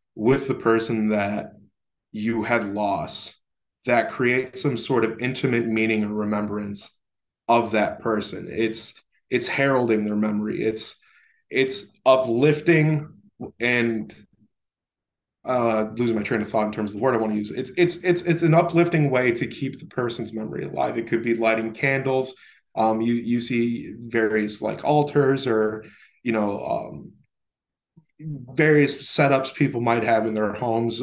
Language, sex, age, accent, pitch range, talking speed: English, male, 20-39, American, 105-130 Hz, 155 wpm